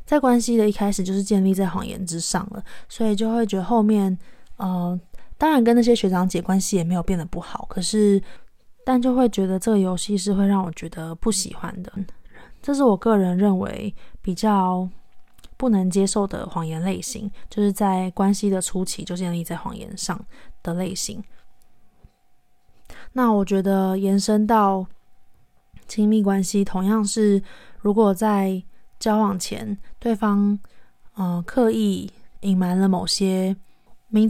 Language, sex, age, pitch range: Chinese, female, 20-39, 180-210 Hz